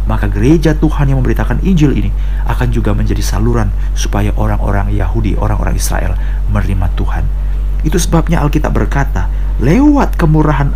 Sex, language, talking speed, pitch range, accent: male, Indonesian, 135 wpm, 90-130 Hz, native